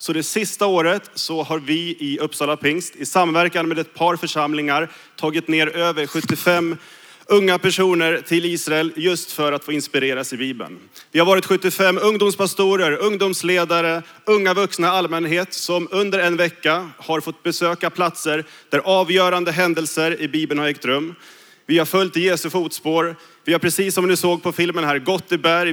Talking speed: 175 wpm